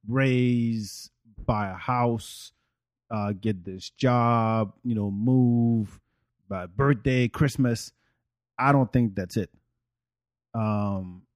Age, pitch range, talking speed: 30-49, 110-125 Hz, 105 wpm